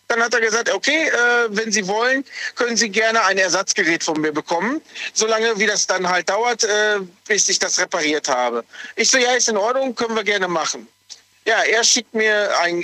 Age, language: 40-59, German